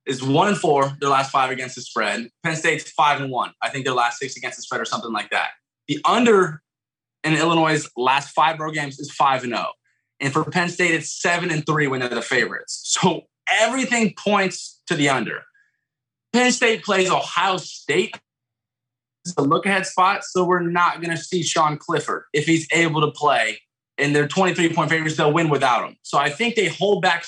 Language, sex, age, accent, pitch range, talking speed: English, male, 20-39, American, 130-170 Hz, 215 wpm